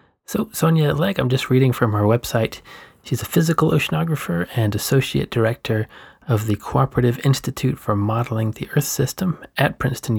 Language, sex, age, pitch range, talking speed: English, male, 30-49, 105-135 Hz, 160 wpm